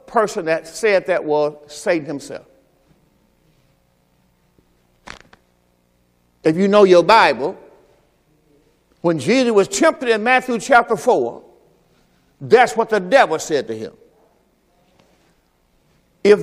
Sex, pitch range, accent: male, 150-245 Hz, American